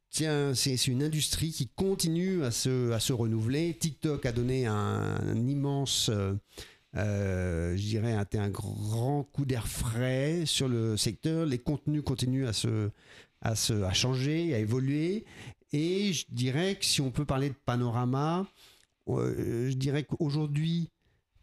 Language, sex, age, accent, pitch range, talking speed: French, male, 50-69, French, 115-145 Hz, 145 wpm